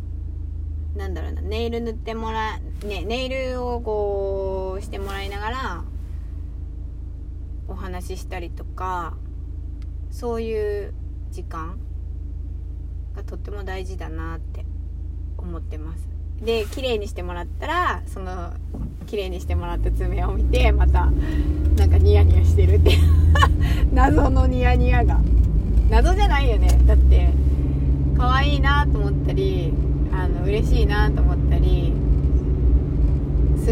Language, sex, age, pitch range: Japanese, female, 20-39, 70-80 Hz